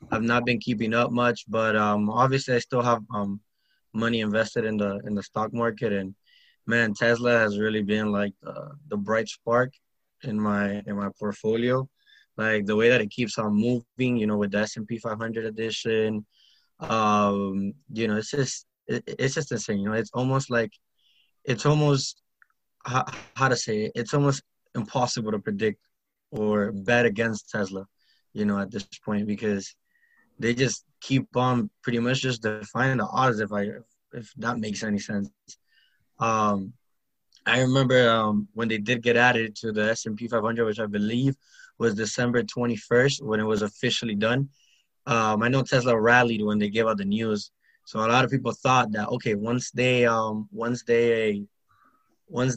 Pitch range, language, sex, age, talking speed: 105-125 Hz, English, male, 20-39, 175 wpm